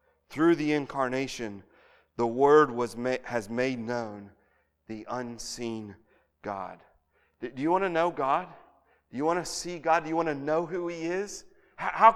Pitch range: 140-210 Hz